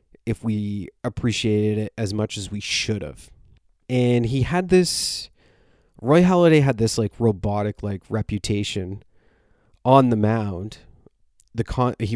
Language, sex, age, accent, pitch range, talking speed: English, male, 30-49, American, 105-120 Hz, 140 wpm